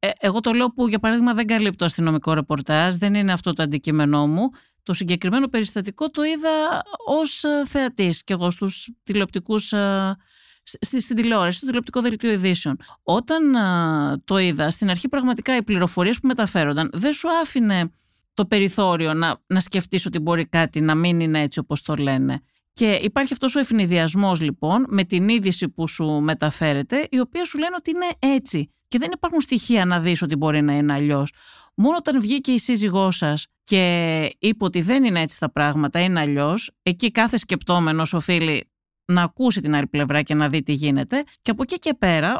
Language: Greek